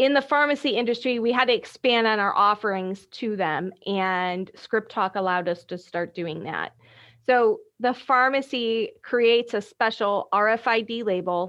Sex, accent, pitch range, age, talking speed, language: female, American, 195-250 Hz, 30-49, 155 wpm, English